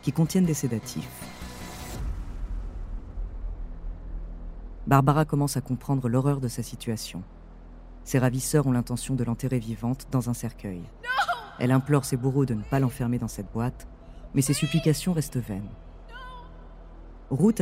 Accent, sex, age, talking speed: French, female, 30-49, 135 wpm